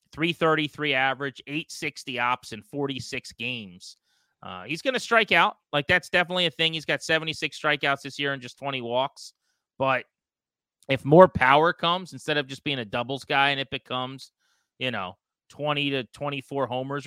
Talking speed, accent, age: 170 wpm, American, 30-49